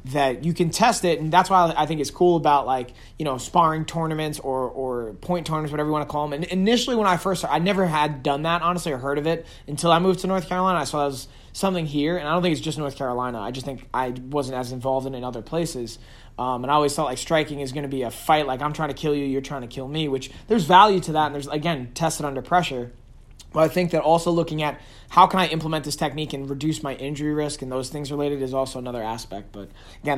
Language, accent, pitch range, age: English, American, 130-160 Hz, 20-39